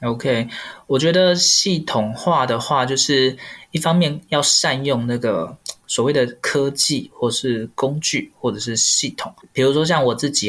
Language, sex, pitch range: Chinese, male, 120-150 Hz